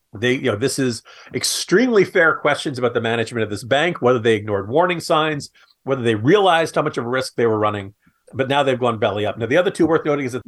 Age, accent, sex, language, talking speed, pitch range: 40-59, American, male, English, 250 wpm, 115-150 Hz